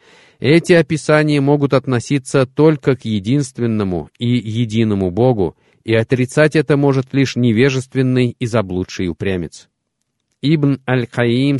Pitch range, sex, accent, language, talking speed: 100-135 Hz, male, native, Russian, 110 wpm